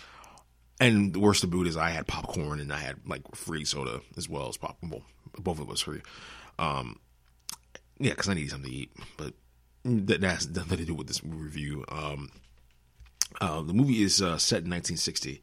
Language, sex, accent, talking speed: English, male, American, 200 wpm